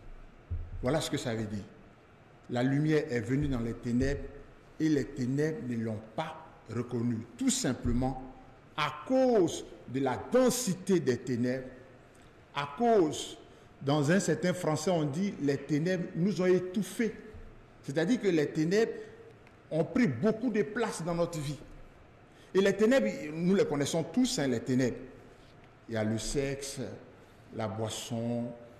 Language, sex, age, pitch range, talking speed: English, male, 60-79, 115-180 Hz, 150 wpm